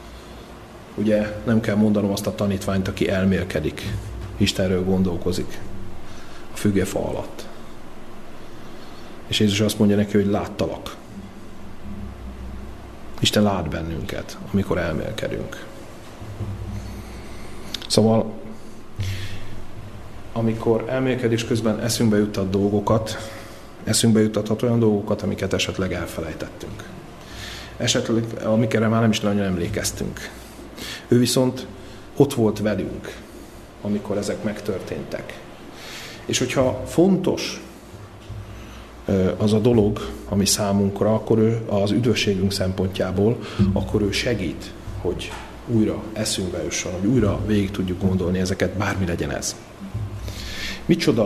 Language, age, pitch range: Hungarian, 30-49, 100-110 Hz